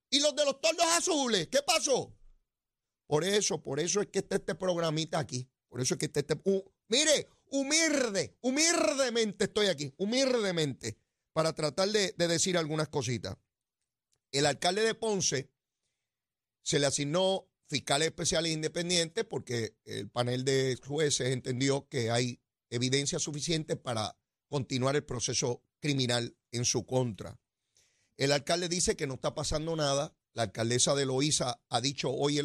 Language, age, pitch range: Spanish, 40-59, 125-175 Hz